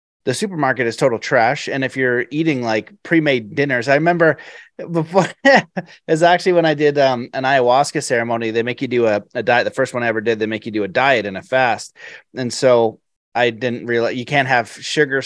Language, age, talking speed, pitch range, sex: English, 30-49, 215 wpm, 115-150 Hz, male